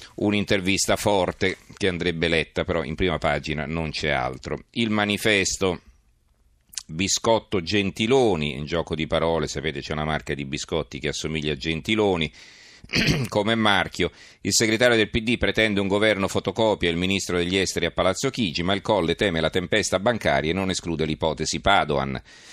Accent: native